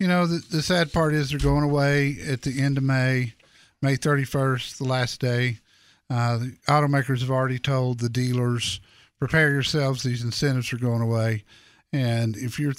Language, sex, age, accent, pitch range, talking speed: English, male, 50-69, American, 125-155 Hz, 180 wpm